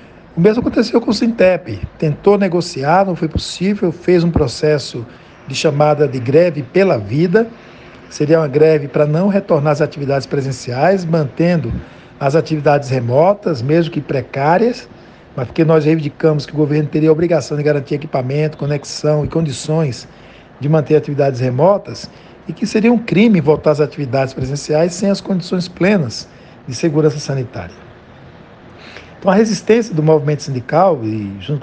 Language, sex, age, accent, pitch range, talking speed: Portuguese, male, 60-79, Brazilian, 140-180 Hz, 150 wpm